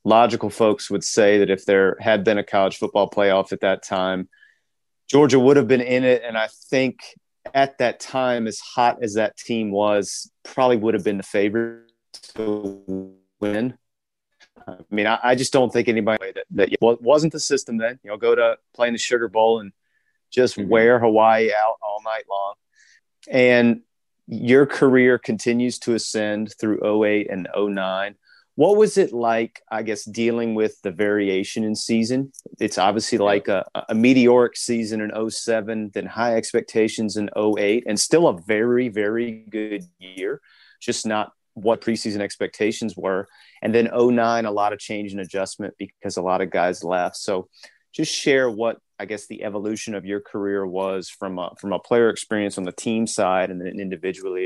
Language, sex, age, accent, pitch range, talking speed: English, male, 30-49, American, 100-120 Hz, 175 wpm